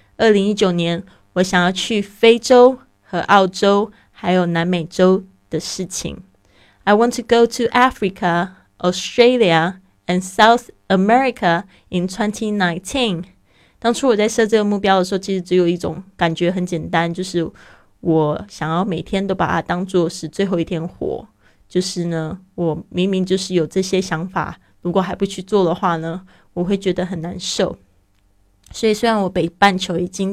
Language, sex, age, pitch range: Chinese, female, 20-39, 175-200 Hz